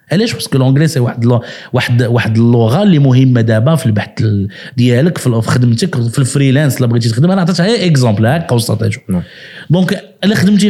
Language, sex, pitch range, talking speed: Arabic, male, 135-195 Hz, 165 wpm